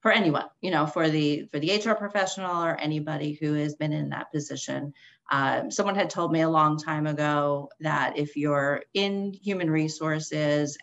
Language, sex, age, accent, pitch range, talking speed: English, female, 30-49, American, 150-200 Hz, 185 wpm